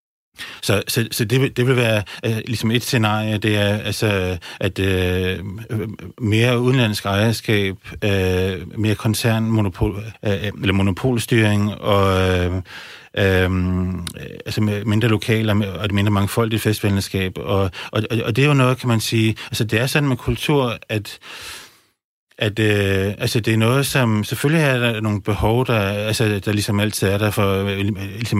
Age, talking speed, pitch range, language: 30-49, 155 wpm, 100-115 Hz, Danish